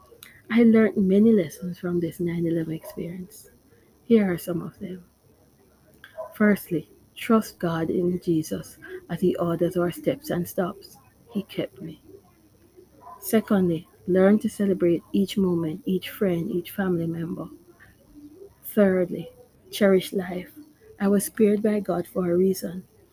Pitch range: 170-195 Hz